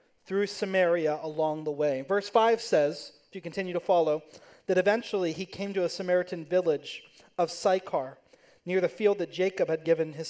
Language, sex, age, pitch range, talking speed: English, male, 30-49, 165-195 Hz, 180 wpm